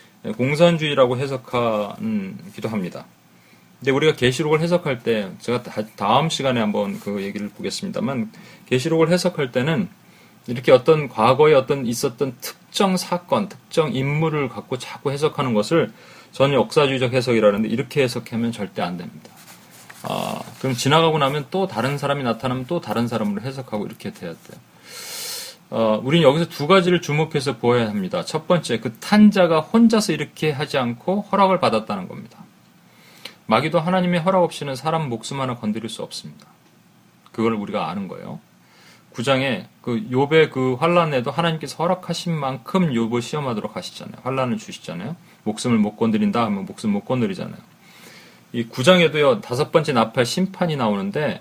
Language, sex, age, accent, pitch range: Korean, male, 30-49, native, 120-180 Hz